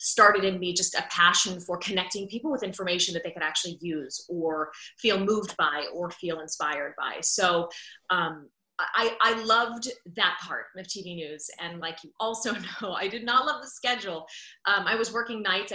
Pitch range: 170-205 Hz